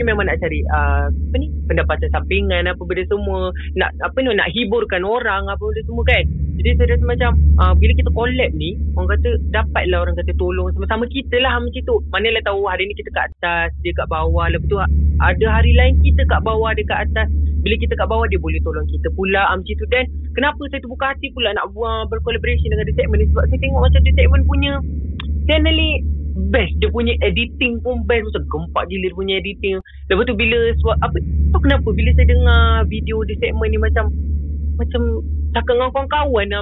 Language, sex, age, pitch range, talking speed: Malay, female, 30-49, 75-80 Hz, 205 wpm